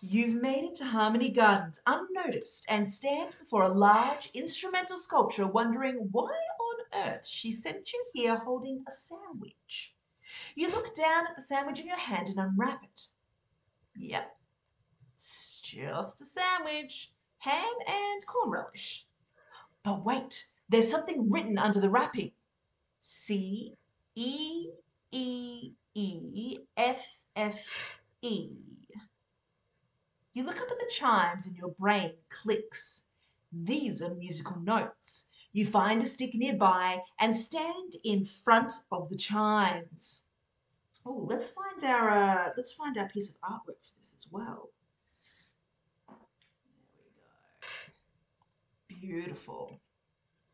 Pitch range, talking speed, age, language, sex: 205-300 Hz, 120 wpm, 40-59, English, female